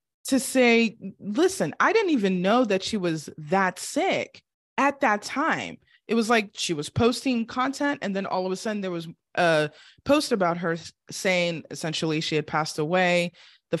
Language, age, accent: English, 20-39, American